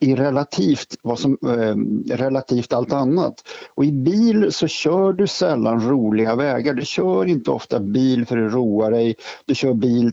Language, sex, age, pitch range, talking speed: Swedish, male, 50-69, 110-140 Hz, 170 wpm